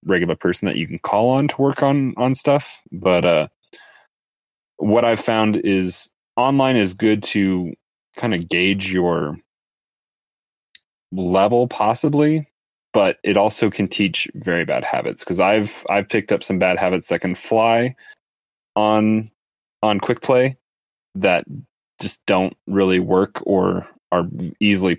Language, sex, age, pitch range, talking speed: English, male, 30-49, 95-115 Hz, 140 wpm